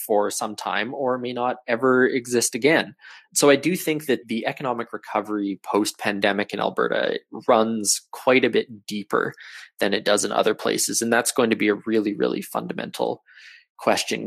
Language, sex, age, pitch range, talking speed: English, male, 20-39, 105-125 Hz, 175 wpm